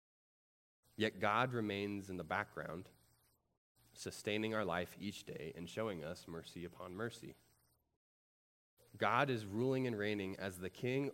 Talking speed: 135 wpm